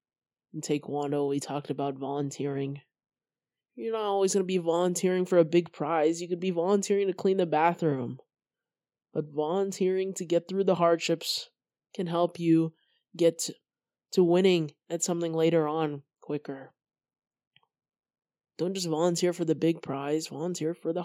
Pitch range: 150-195 Hz